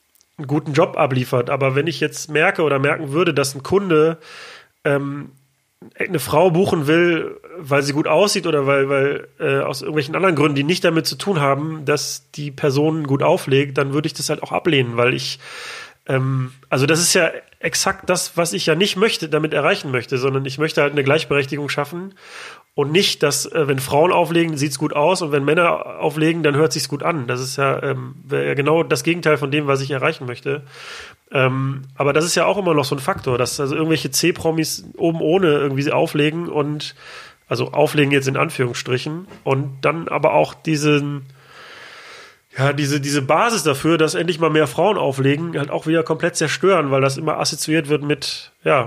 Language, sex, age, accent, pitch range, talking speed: German, male, 30-49, German, 140-160 Hz, 200 wpm